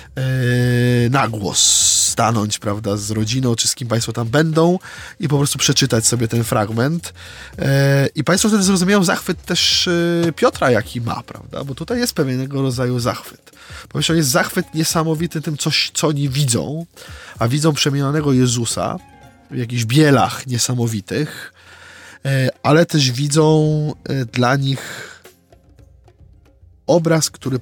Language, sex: Polish, male